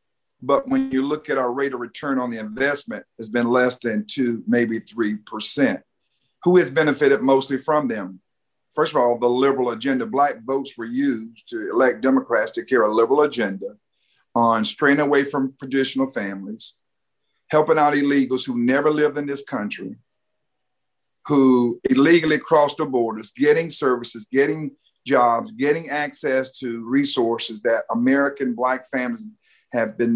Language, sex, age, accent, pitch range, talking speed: English, male, 50-69, American, 120-145 Hz, 155 wpm